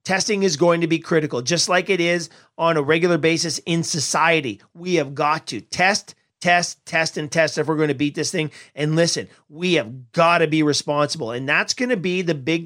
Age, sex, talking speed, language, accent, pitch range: 40-59, male, 225 wpm, English, American, 150-175 Hz